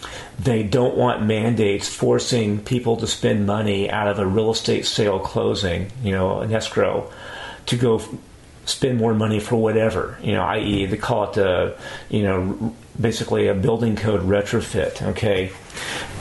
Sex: male